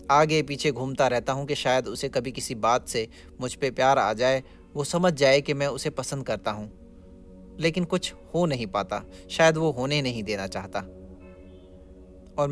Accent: native